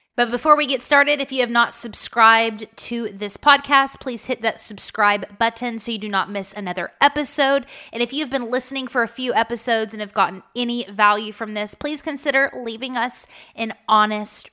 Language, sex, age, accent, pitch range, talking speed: English, female, 20-39, American, 210-260 Hz, 195 wpm